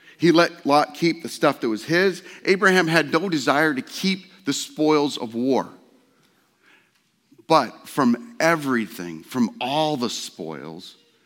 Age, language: 40-59, English